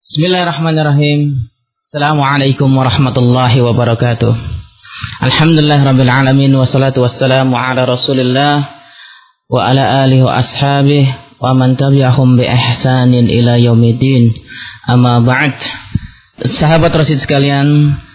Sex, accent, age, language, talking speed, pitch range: male, native, 30-49, Indonesian, 95 wpm, 120-140 Hz